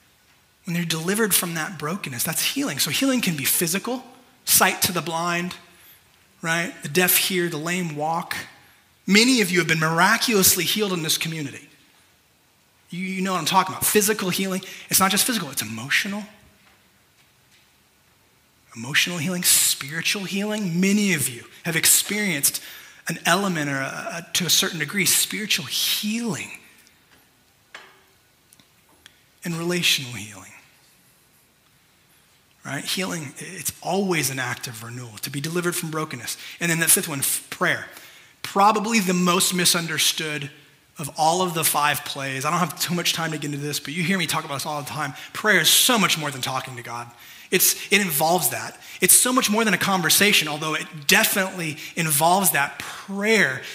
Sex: male